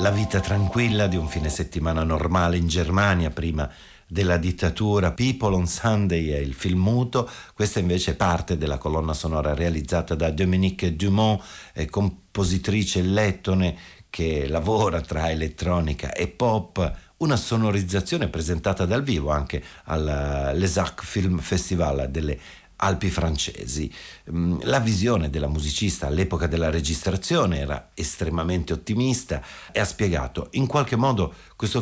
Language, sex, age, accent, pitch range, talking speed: Italian, male, 50-69, native, 80-100 Hz, 130 wpm